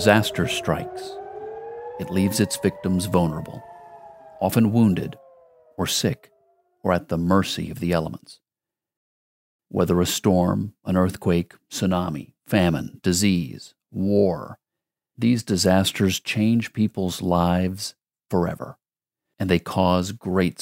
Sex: male